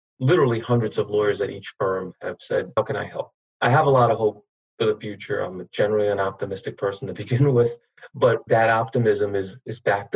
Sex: male